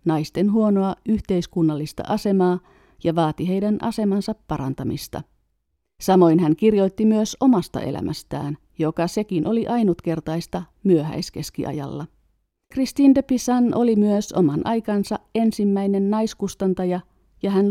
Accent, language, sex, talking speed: native, Finnish, female, 105 wpm